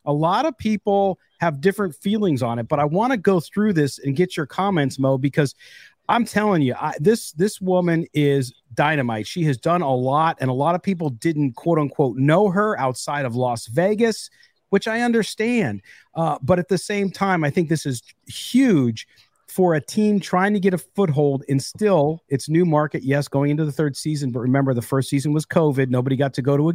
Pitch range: 140-185 Hz